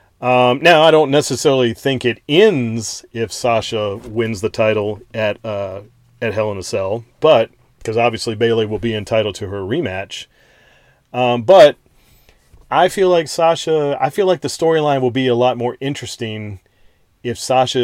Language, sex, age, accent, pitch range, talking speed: English, male, 40-59, American, 105-125 Hz, 165 wpm